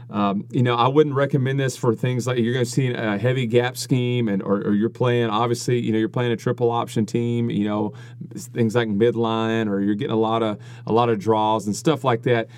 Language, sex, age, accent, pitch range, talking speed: English, male, 40-59, American, 110-125 Hz, 245 wpm